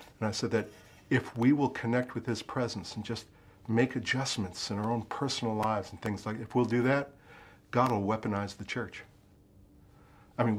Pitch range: 100-130 Hz